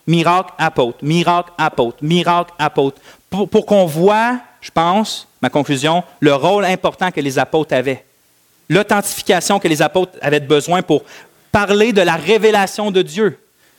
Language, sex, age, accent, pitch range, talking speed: French, male, 40-59, Canadian, 145-190 Hz, 150 wpm